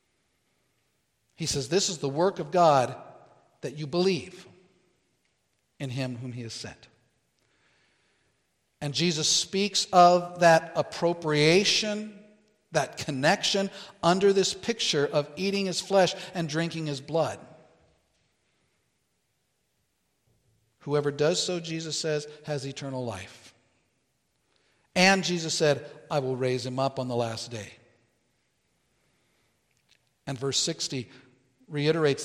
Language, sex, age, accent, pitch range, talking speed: English, male, 50-69, American, 140-190 Hz, 110 wpm